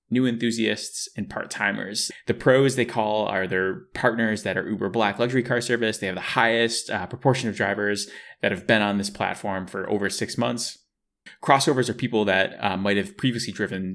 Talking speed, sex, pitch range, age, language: 195 wpm, male, 95-120 Hz, 20-39, English